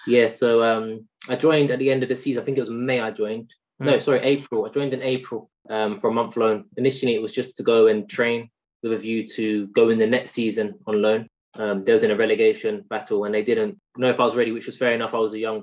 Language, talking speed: English, 275 wpm